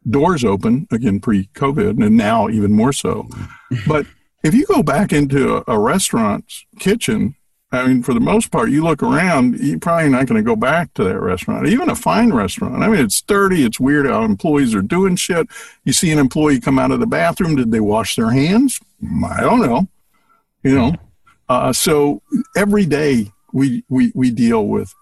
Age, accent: 60-79, American